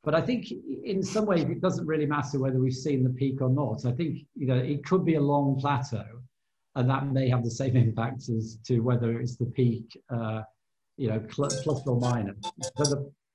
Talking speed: 220 wpm